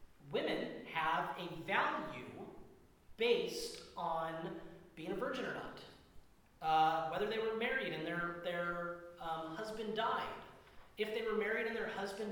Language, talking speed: English, 140 wpm